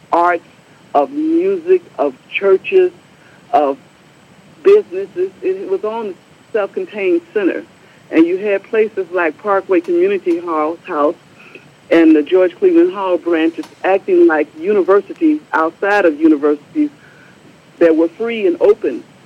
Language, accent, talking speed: English, American, 120 wpm